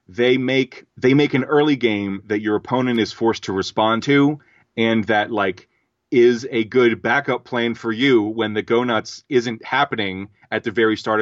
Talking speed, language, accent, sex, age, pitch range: 185 wpm, English, American, male, 30-49, 110-130 Hz